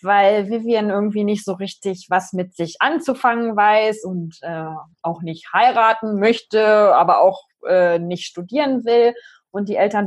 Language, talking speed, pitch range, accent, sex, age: German, 155 wpm, 195-250 Hz, German, female, 20-39